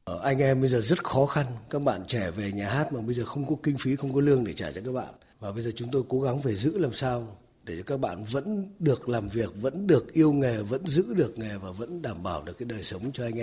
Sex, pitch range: male, 115-150 Hz